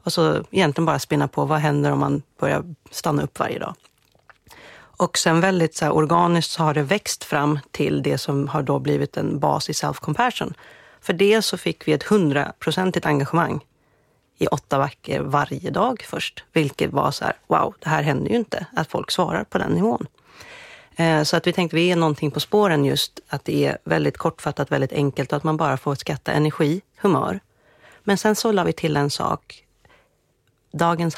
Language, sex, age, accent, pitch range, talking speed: English, female, 40-59, Swedish, 145-170 Hz, 185 wpm